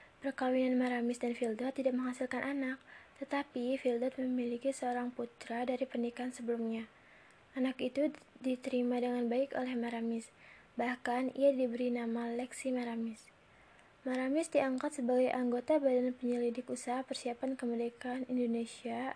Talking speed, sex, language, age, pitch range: 120 wpm, female, Indonesian, 20-39, 240-260 Hz